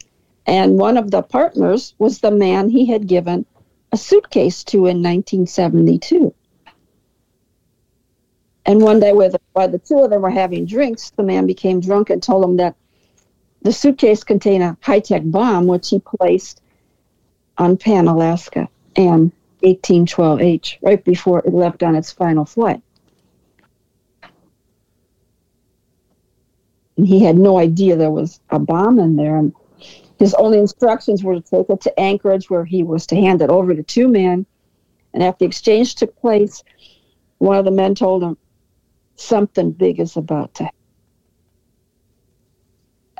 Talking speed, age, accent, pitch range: 145 wpm, 50-69, American, 165-210 Hz